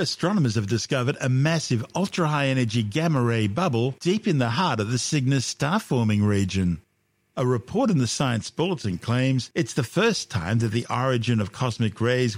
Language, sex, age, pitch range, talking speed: English, male, 50-69, 105-130 Hz, 165 wpm